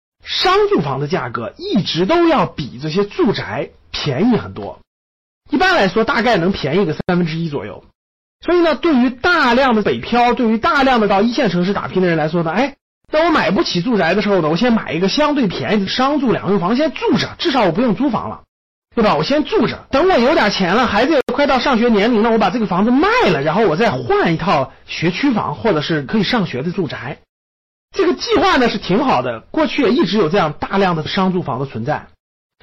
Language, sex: Chinese, male